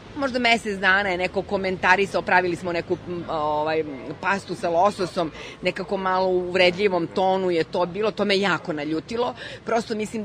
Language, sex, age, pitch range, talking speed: English, female, 30-49, 175-215 Hz, 150 wpm